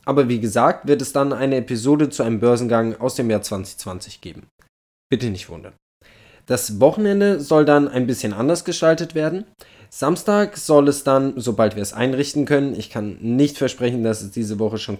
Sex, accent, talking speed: male, German, 185 wpm